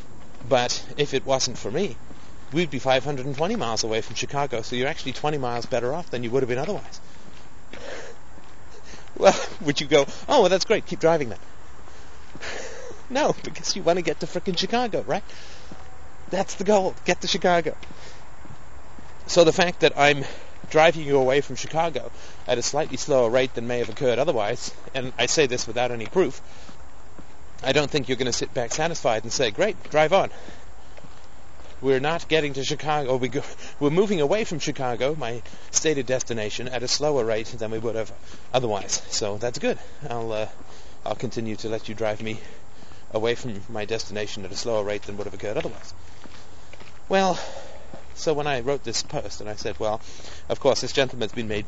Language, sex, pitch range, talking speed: English, male, 115-150 Hz, 180 wpm